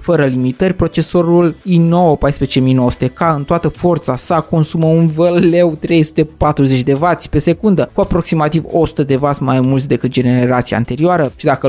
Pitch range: 135-170 Hz